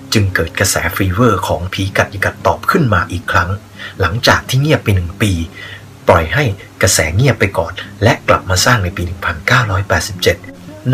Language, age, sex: Thai, 30-49, male